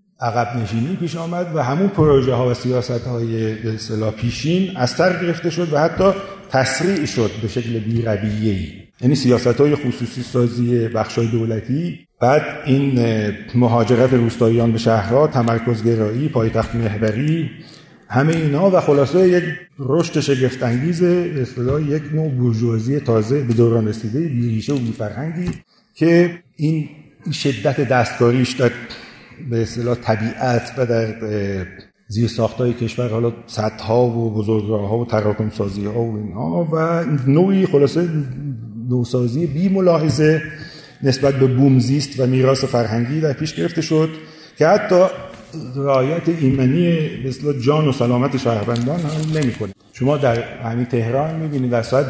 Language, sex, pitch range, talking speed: Persian, male, 115-150 Hz, 135 wpm